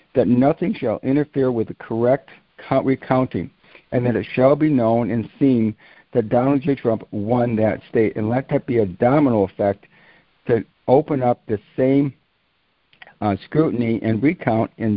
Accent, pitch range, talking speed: American, 110-135 Hz, 160 wpm